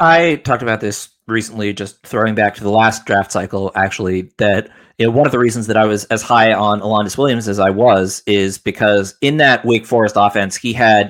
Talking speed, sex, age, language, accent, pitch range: 210 wpm, male, 30-49, English, American, 100-125 Hz